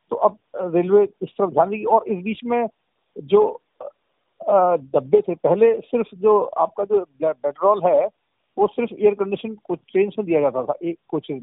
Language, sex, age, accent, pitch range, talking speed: Hindi, male, 50-69, native, 165-215 Hz, 150 wpm